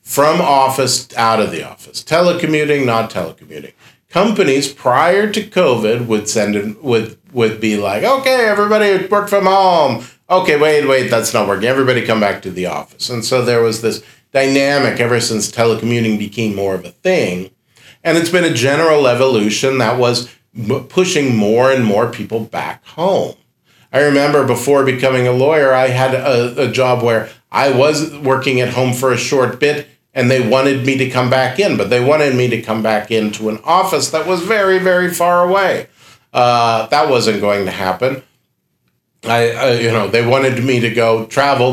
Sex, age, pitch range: male, 50-69, 115-140 Hz